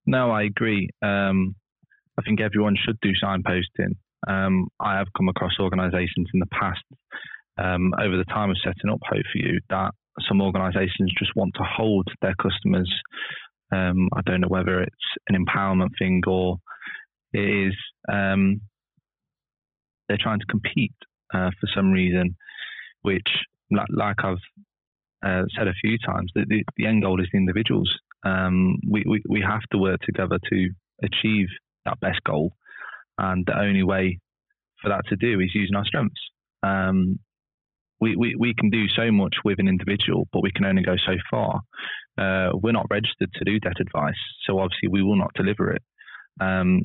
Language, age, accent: English, 20-39, British